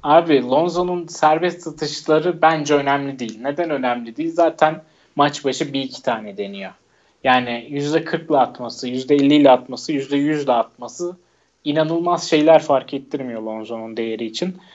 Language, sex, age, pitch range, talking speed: Turkish, male, 30-49, 130-160 Hz, 125 wpm